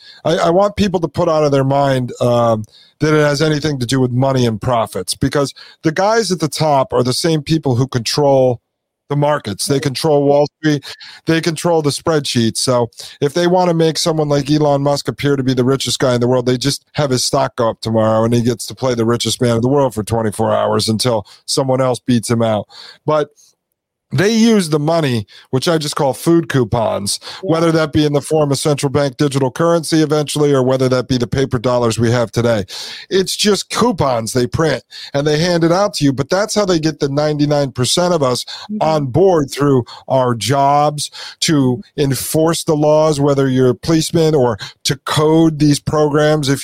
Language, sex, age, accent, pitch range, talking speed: English, male, 40-59, American, 125-160 Hz, 210 wpm